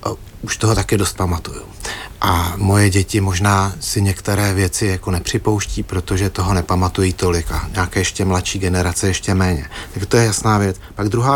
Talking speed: 170 wpm